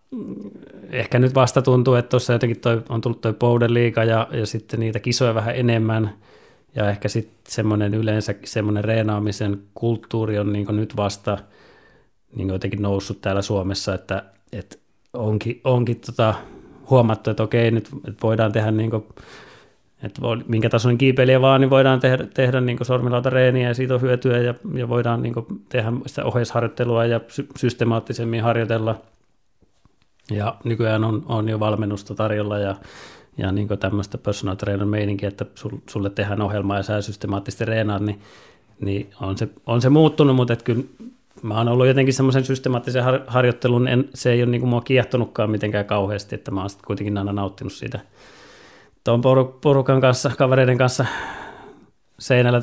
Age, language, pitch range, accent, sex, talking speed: 30-49, Finnish, 105-125 Hz, native, male, 150 wpm